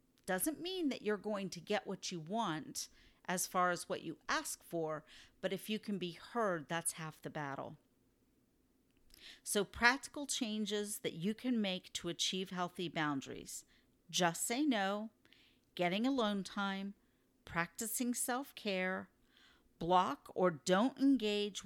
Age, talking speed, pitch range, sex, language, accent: 40-59, 140 wpm, 170-215 Hz, female, English, American